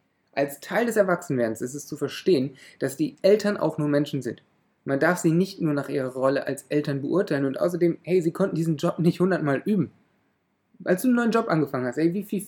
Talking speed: 220 wpm